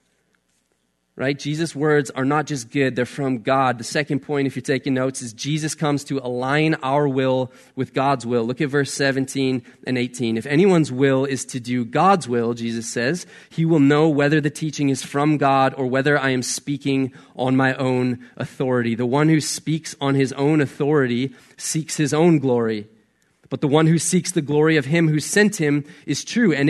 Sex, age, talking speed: male, 20-39, 200 wpm